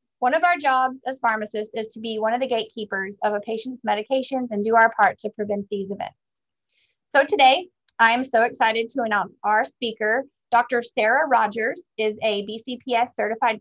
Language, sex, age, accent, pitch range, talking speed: English, female, 30-49, American, 210-250 Hz, 185 wpm